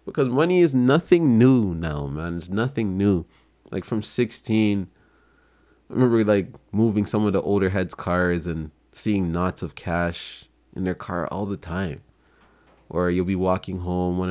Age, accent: 20-39, American